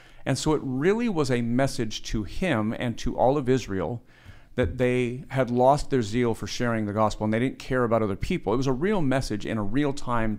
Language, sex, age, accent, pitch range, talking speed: English, male, 50-69, American, 110-135 Hz, 230 wpm